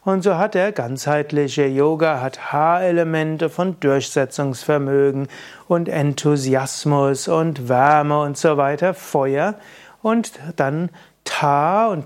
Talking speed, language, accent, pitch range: 110 wpm, German, German, 140-170 Hz